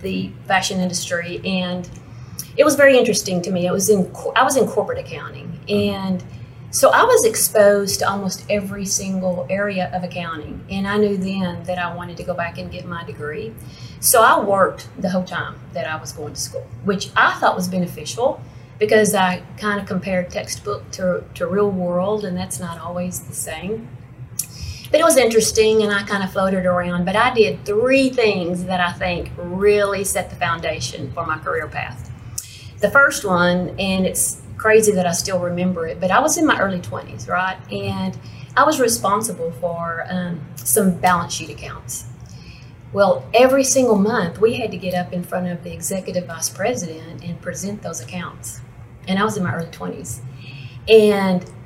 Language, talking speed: English, 185 wpm